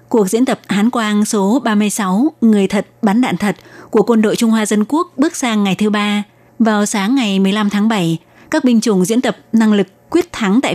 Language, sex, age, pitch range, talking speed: Vietnamese, female, 20-39, 195-230 Hz, 225 wpm